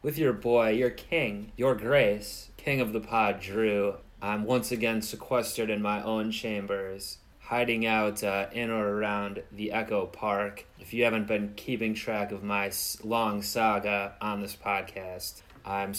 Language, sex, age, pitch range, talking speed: English, male, 20-39, 100-110 Hz, 160 wpm